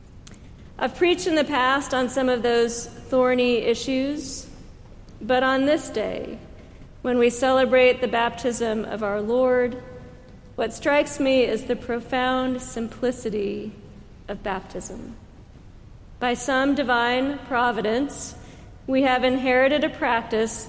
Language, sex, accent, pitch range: English, female, American, 230-265 Hz